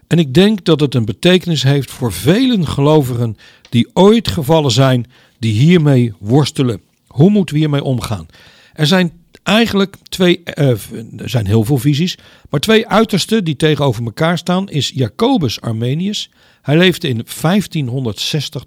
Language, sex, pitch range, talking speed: Dutch, male, 120-175 Hz, 150 wpm